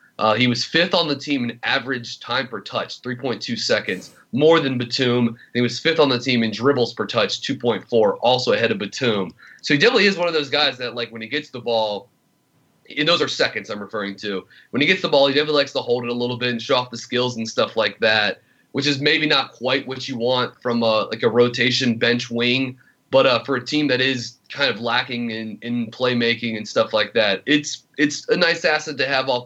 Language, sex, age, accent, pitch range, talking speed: English, male, 30-49, American, 115-140 Hz, 235 wpm